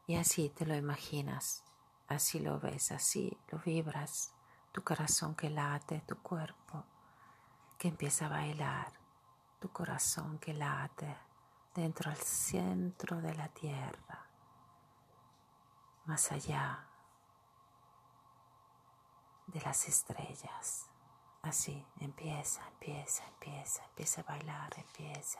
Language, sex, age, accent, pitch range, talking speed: Italian, female, 40-59, native, 150-175 Hz, 105 wpm